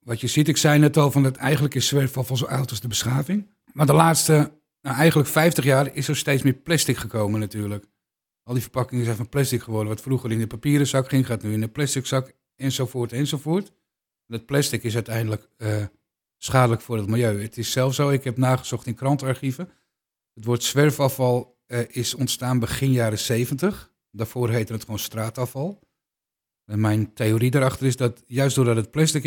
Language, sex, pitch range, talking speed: Dutch, male, 115-135 Hz, 195 wpm